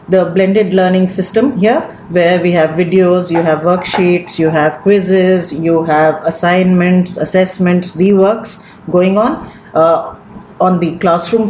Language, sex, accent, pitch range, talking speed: English, female, Indian, 180-220 Hz, 140 wpm